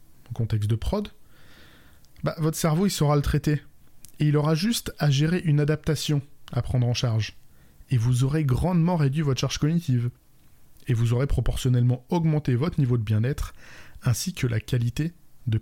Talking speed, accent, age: 170 wpm, French, 20-39